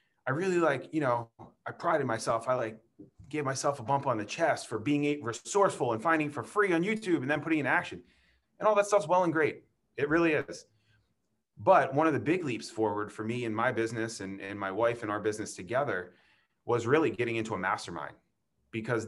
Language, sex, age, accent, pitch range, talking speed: English, male, 30-49, American, 105-140 Hz, 215 wpm